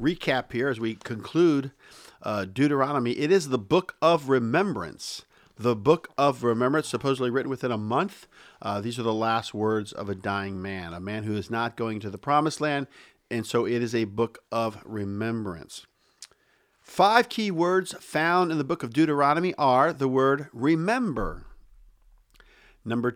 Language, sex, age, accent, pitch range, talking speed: English, male, 50-69, American, 115-155 Hz, 165 wpm